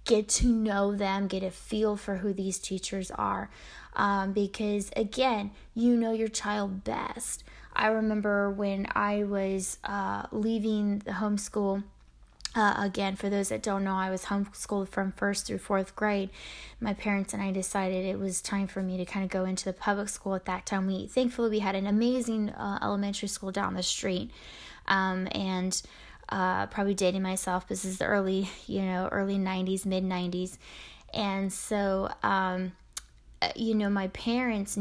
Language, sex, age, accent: English, female, 10-29, American